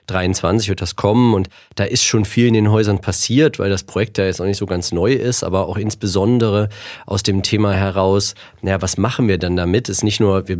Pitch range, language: 100-110 Hz, German